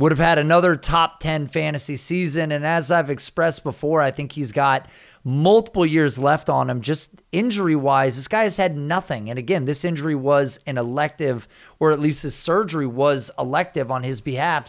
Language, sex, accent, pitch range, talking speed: English, male, American, 135-175 Hz, 190 wpm